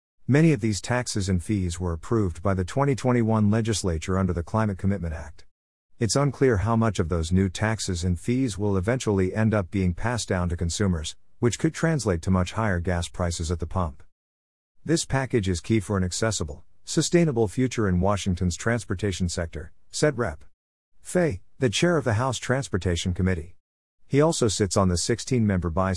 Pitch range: 90-115 Hz